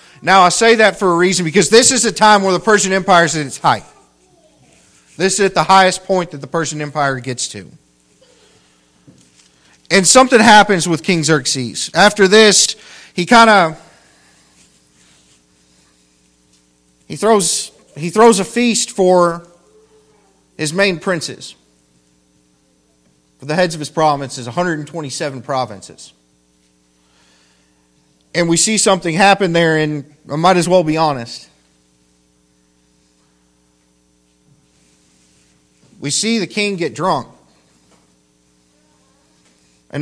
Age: 40-59